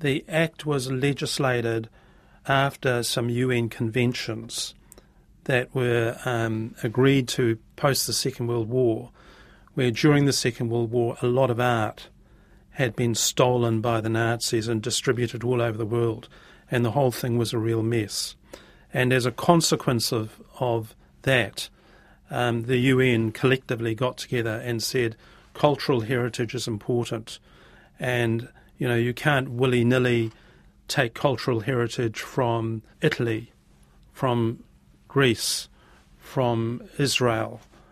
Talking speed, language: 130 wpm, English